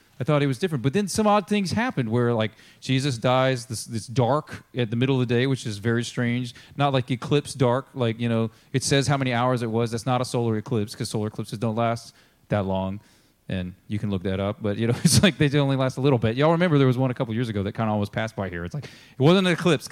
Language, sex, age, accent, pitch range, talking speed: English, male, 30-49, American, 120-155 Hz, 285 wpm